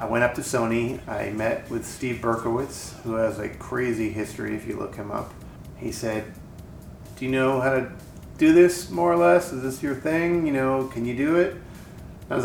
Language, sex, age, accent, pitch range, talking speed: English, male, 30-49, American, 115-140 Hz, 210 wpm